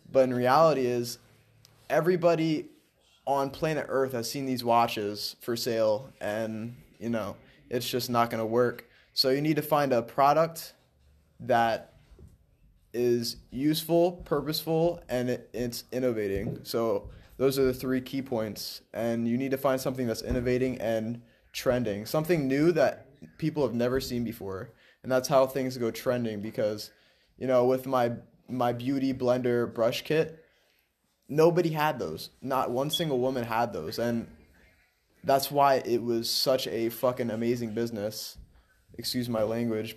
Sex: male